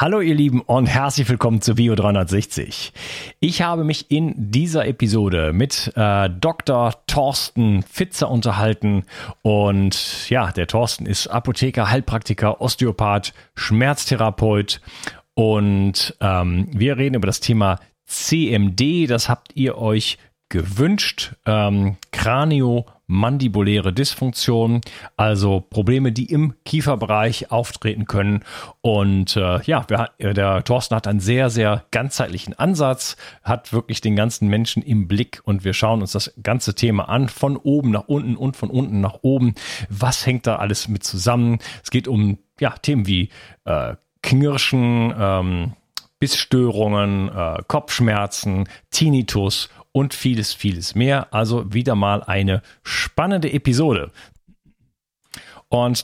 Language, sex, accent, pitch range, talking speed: German, male, German, 100-130 Hz, 125 wpm